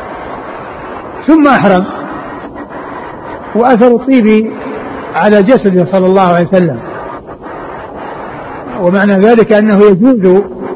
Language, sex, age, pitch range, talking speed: Arabic, male, 60-79, 195-240 Hz, 80 wpm